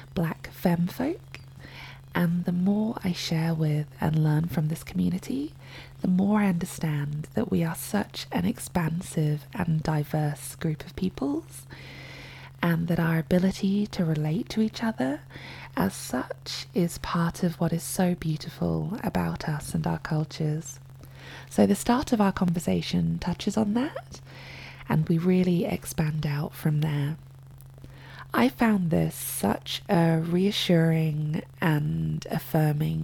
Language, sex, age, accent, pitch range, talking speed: English, female, 20-39, British, 145-180 Hz, 140 wpm